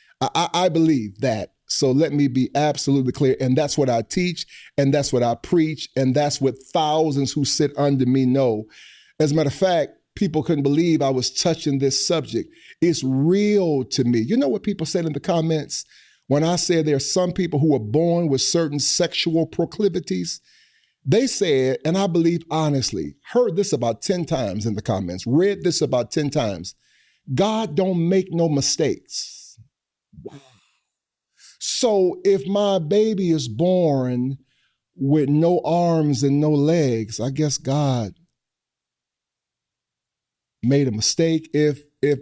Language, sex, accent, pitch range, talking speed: English, male, American, 135-170 Hz, 160 wpm